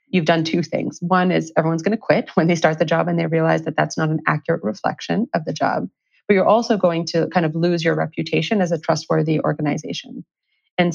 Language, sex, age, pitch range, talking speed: English, female, 30-49, 160-195 Hz, 230 wpm